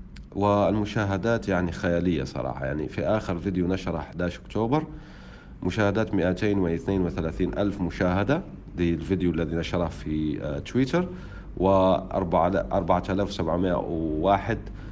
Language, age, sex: Arabic, 40-59, male